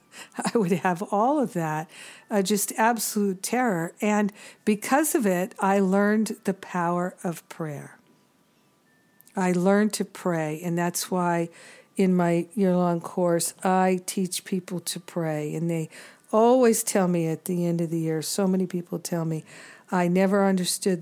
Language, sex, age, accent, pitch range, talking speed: English, female, 50-69, American, 170-205 Hz, 155 wpm